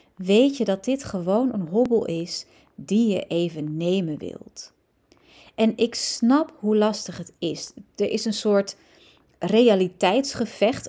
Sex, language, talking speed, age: female, Dutch, 140 wpm, 30-49